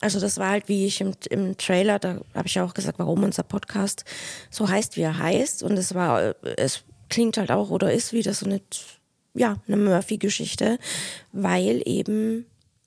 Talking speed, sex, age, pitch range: 185 wpm, female, 20-39, 175-210 Hz